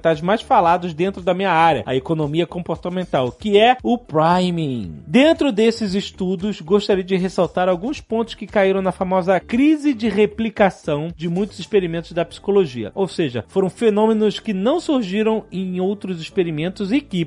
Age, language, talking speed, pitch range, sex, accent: 30-49, Portuguese, 155 wpm, 170-210 Hz, male, Brazilian